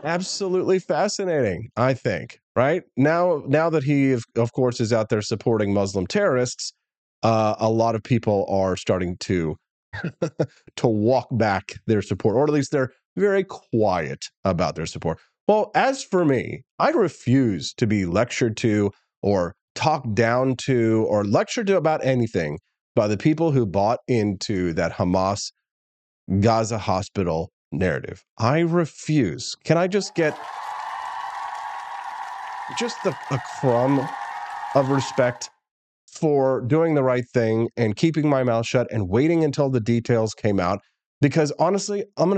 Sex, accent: male, American